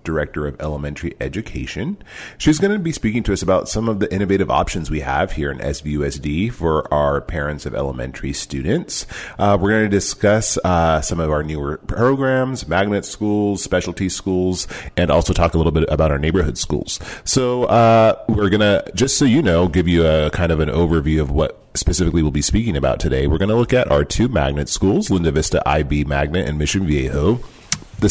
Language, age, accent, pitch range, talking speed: English, 30-49, American, 75-105 Hz, 200 wpm